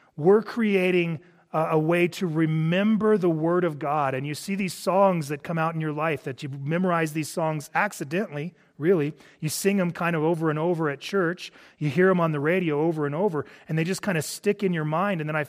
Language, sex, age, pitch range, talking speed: English, male, 30-49, 145-175 Hz, 230 wpm